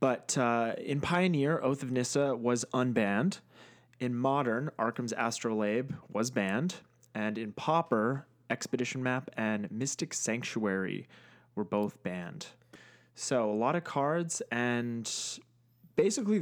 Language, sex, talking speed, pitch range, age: English, male, 120 wpm, 110-135 Hz, 20-39